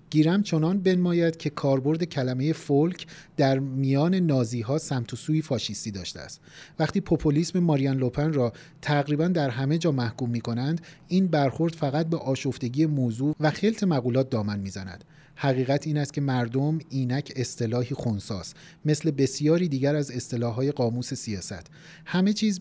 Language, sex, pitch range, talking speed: Persian, male, 120-155 Hz, 145 wpm